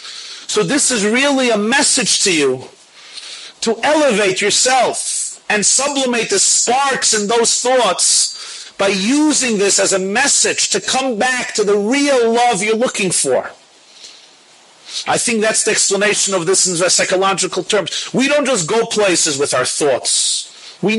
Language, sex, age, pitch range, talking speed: English, male, 40-59, 205-275 Hz, 155 wpm